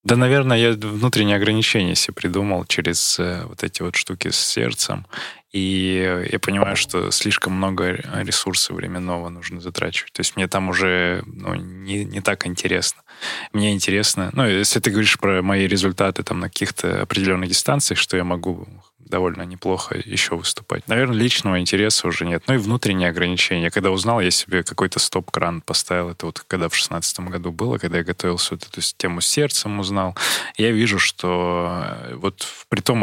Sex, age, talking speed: male, 20-39, 170 wpm